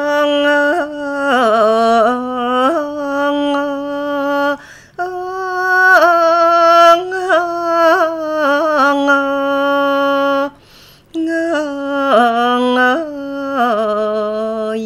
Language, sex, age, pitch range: Thai, female, 30-49, 240-305 Hz